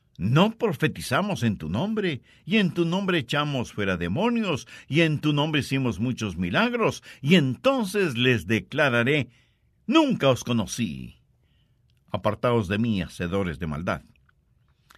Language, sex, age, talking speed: English, male, 60-79, 130 wpm